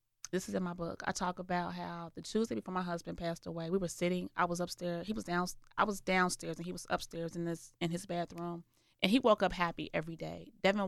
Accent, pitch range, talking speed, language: American, 170-205 Hz, 250 wpm, English